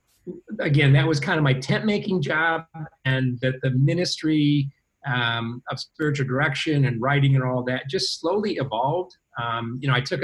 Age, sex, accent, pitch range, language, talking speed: 40-59, male, American, 115-145 Hz, English, 175 wpm